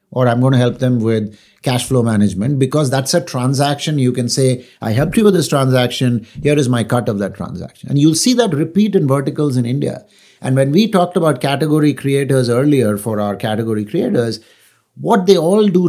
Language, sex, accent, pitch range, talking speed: English, male, Indian, 125-155 Hz, 210 wpm